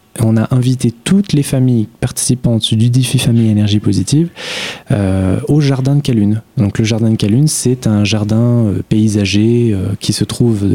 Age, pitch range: 20-39, 105-130 Hz